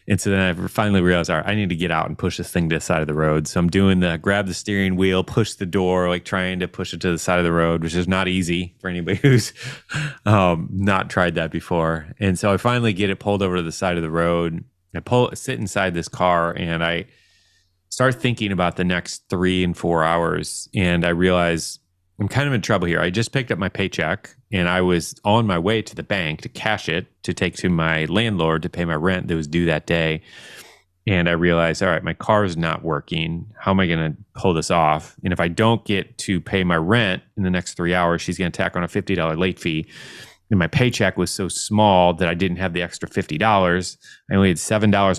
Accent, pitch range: American, 85-100 Hz